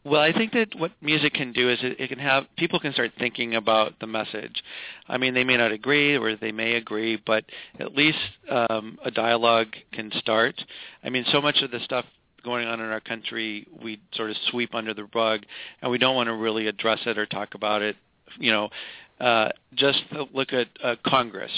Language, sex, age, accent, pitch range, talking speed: English, male, 40-59, American, 110-130 Hz, 210 wpm